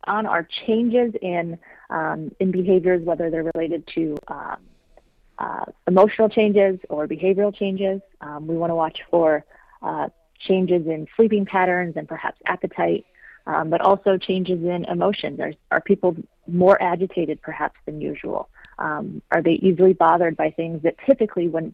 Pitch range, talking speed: 160-190 Hz, 155 wpm